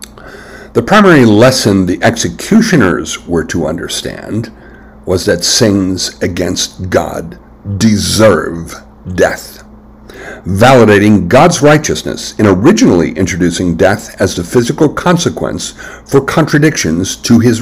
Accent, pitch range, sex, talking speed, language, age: American, 95-130 Hz, male, 100 wpm, English, 60-79